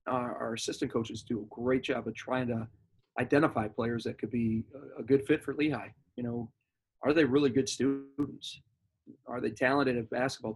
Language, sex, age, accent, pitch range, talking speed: English, male, 30-49, American, 120-145 Hz, 175 wpm